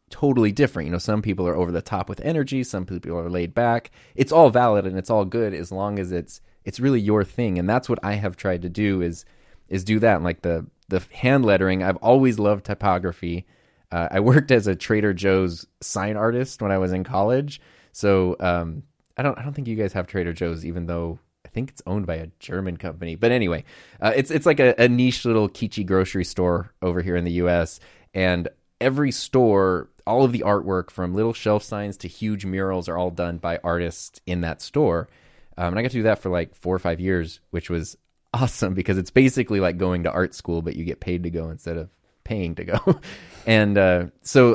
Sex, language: male, English